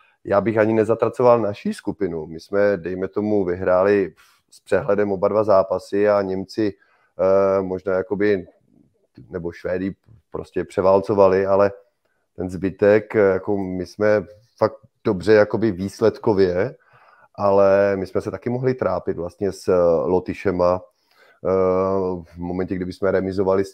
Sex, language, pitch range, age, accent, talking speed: male, Czech, 95-105 Hz, 30-49, native, 130 wpm